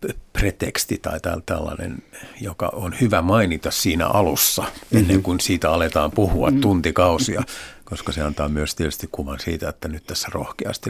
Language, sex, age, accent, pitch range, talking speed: Finnish, male, 50-69, native, 75-95 Hz, 145 wpm